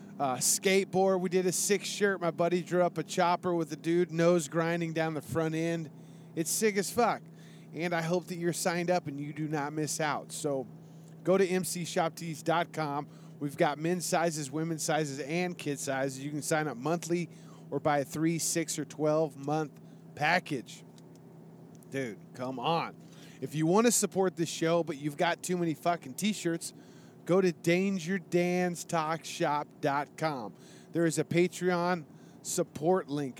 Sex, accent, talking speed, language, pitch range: male, American, 165 wpm, English, 150-185 Hz